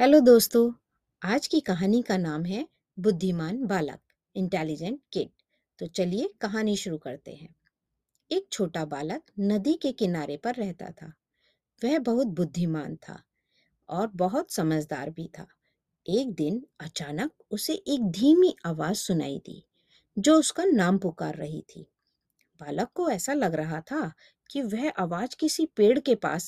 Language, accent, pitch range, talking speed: Hindi, native, 175-260 Hz, 145 wpm